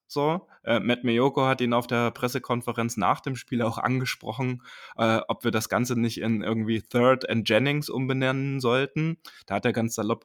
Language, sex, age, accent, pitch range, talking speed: German, male, 20-39, German, 105-125 Hz, 185 wpm